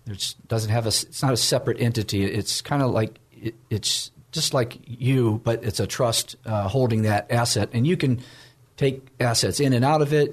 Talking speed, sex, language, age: 210 wpm, male, English, 40-59